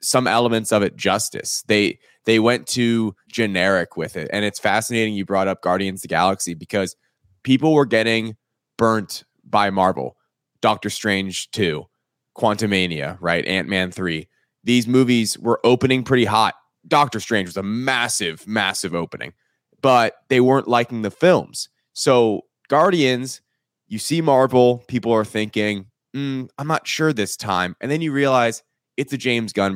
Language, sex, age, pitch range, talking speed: English, male, 20-39, 100-130 Hz, 155 wpm